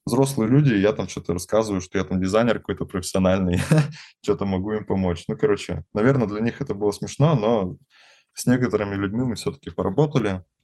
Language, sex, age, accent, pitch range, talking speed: Russian, male, 20-39, native, 95-120 Hz, 175 wpm